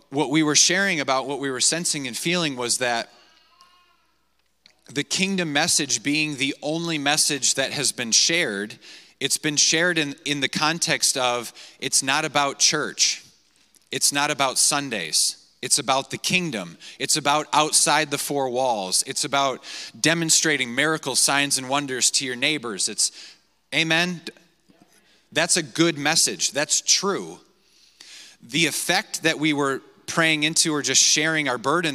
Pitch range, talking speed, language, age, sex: 135-165 Hz, 150 wpm, English, 30-49, male